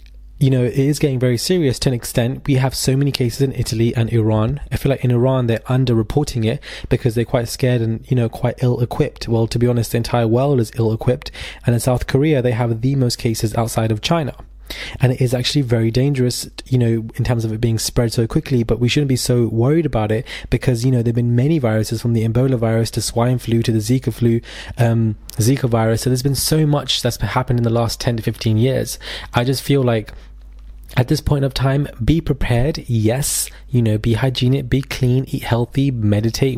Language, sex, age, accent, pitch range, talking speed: English, male, 20-39, British, 110-130 Hz, 225 wpm